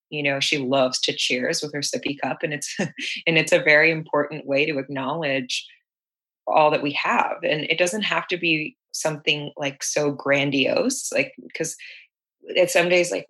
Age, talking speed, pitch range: 20-39, 180 wpm, 140-160 Hz